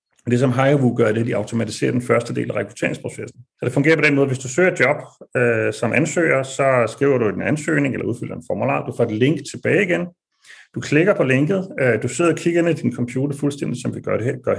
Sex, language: male, Danish